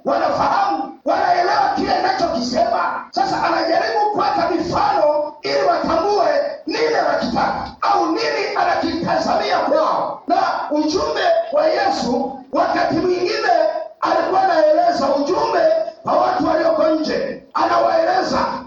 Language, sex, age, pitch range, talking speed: Swahili, male, 40-59, 310-375 Hz, 120 wpm